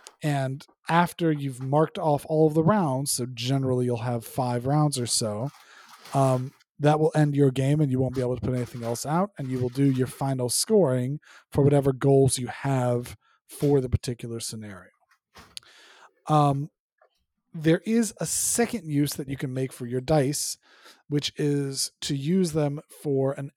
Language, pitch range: English, 125-155 Hz